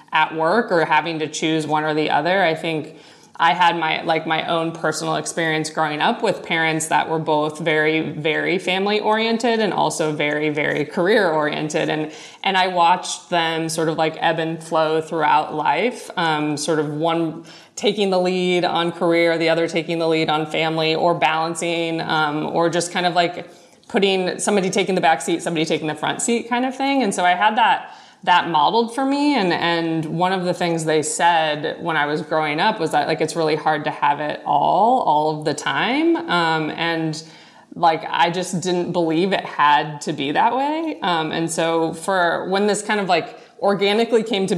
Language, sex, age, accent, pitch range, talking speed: English, female, 20-39, American, 160-185 Hz, 200 wpm